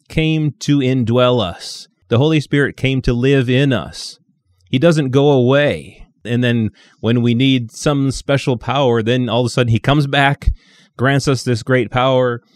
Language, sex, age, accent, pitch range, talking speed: English, male, 30-49, American, 105-135 Hz, 175 wpm